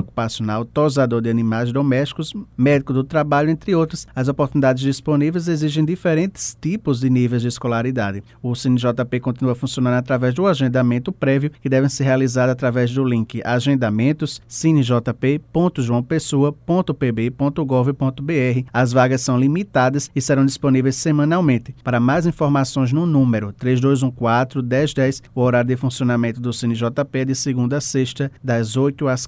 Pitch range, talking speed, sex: 125-145 Hz, 130 wpm, male